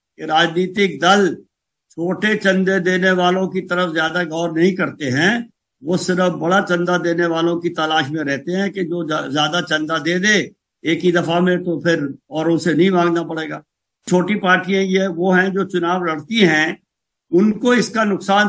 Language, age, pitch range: Hindi, 60-79, 170-195 Hz